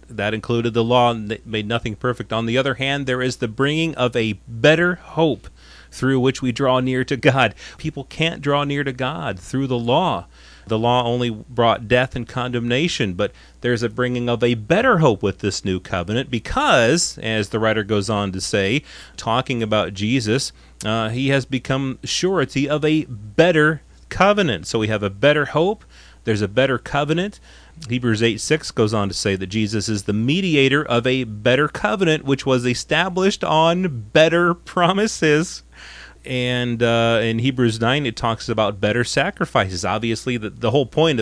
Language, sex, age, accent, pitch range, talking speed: English, male, 40-59, American, 105-135 Hz, 180 wpm